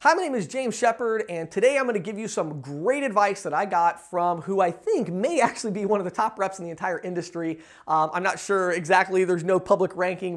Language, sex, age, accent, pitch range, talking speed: English, male, 30-49, American, 165-200 Hz, 255 wpm